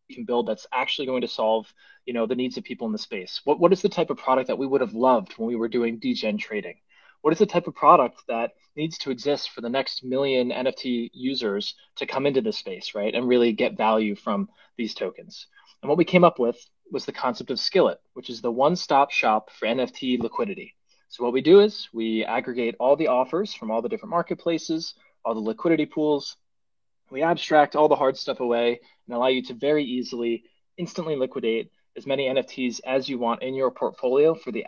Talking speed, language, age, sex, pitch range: 220 wpm, English, 20-39, male, 120-150 Hz